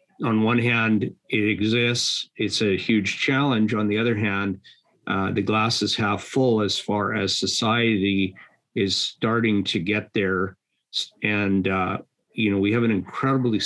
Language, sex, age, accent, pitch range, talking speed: English, male, 50-69, American, 100-115 Hz, 160 wpm